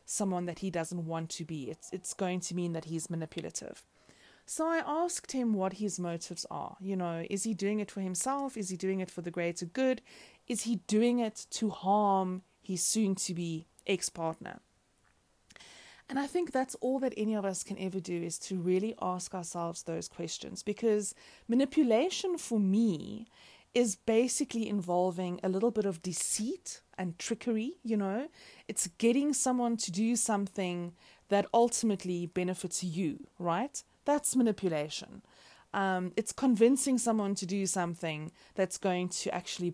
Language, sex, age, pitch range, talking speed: English, female, 30-49, 175-225 Hz, 160 wpm